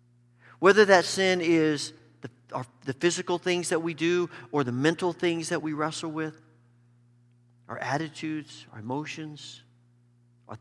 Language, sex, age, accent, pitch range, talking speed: English, male, 50-69, American, 120-195 Hz, 135 wpm